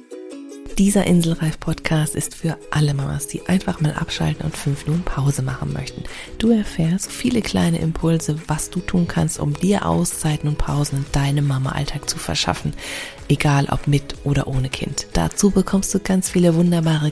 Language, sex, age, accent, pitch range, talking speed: German, female, 30-49, German, 150-200 Hz, 170 wpm